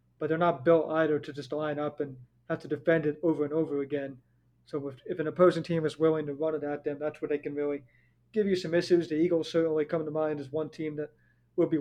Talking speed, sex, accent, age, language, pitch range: 265 wpm, male, American, 30-49, English, 145-165 Hz